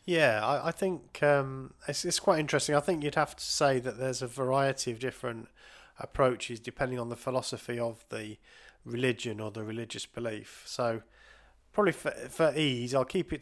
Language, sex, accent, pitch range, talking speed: English, male, British, 115-140 Hz, 185 wpm